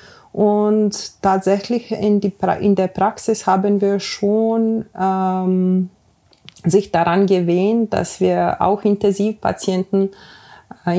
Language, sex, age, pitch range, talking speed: German, female, 30-49, 180-210 Hz, 110 wpm